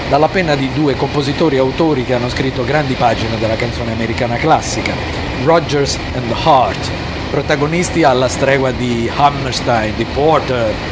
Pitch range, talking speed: 120-155 Hz, 145 wpm